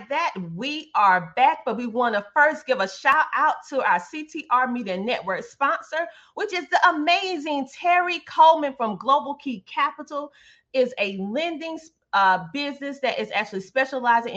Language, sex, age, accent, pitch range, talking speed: English, female, 30-49, American, 215-310 Hz, 160 wpm